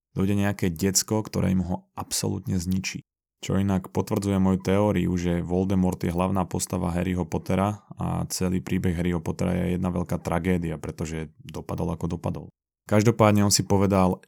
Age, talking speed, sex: 20-39, 155 wpm, male